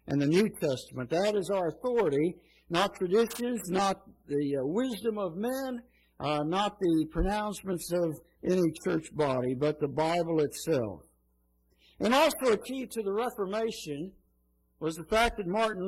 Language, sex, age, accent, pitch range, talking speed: English, male, 60-79, American, 160-225 Hz, 150 wpm